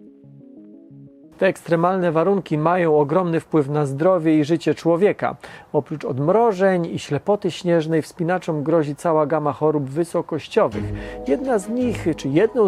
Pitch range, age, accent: 145-185 Hz, 40-59, native